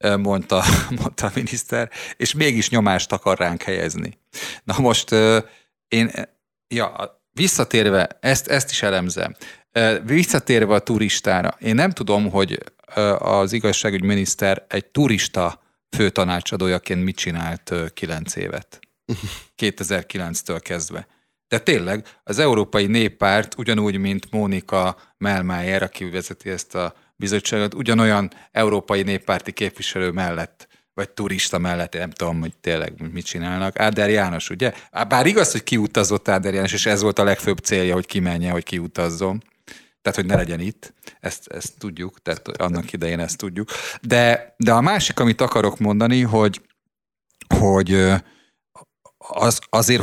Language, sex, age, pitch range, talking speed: Hungarian, male, 40-59, 90-110 Hz, 125 wpm